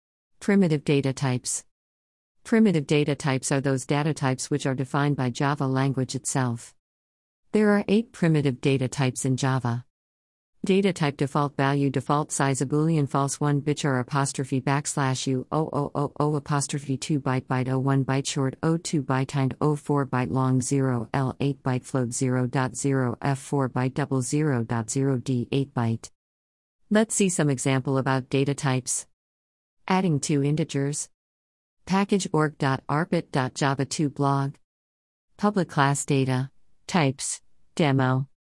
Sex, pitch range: female, 125-150 Hz